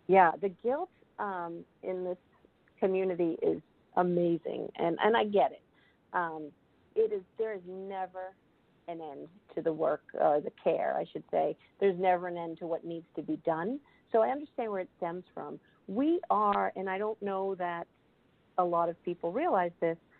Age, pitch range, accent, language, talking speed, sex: 50-69, 170-215 Hz, American, English, 185 wpm, female